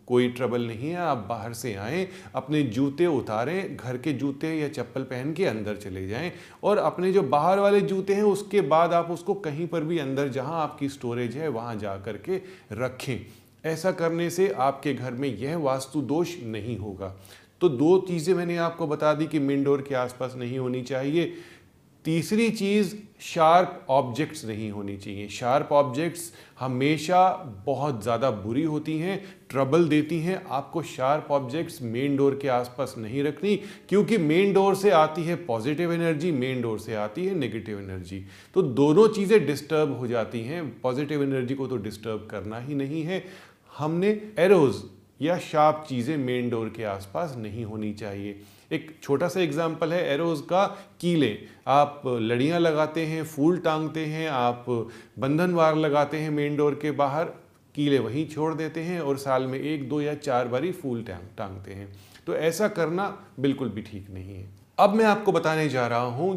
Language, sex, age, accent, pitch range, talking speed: Hindi, male, 30-49, native, 120-170 Hz, 175 wpm